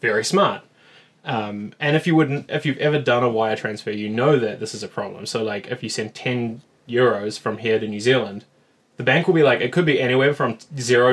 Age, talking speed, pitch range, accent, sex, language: 20-39, 235 wpm, 115-145 Hz, Australian, male, English